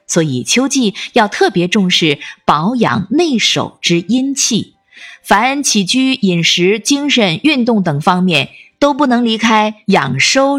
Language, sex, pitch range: Chinese, female, 165-240 Hz